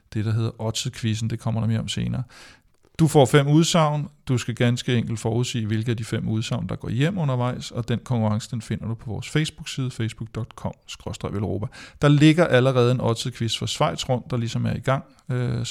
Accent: native